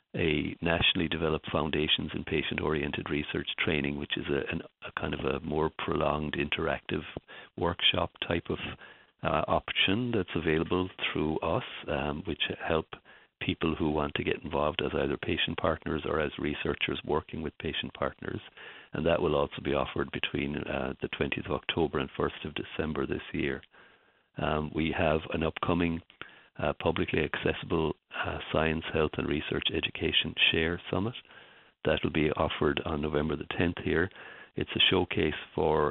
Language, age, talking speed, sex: English, 50-69, 155 wpm, male